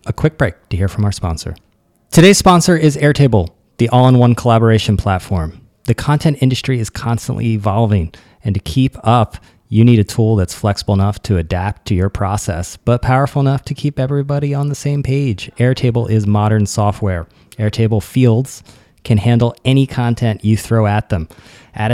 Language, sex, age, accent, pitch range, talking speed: English, male, 30-49, American, 100-130 Hz, 170 wpm